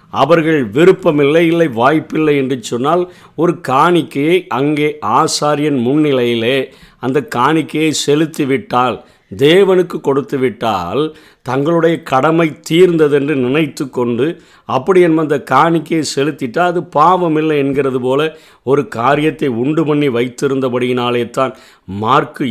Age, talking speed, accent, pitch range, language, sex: 50-69, 105 wpm, native, 130-160 Hz, Tamil, male